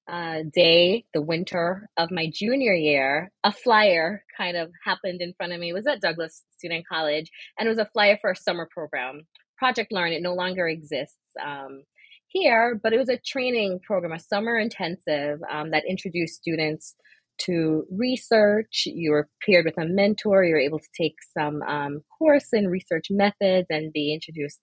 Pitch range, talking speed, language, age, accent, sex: 160-210 Hz, 185 wpm, English, 20-39, American, female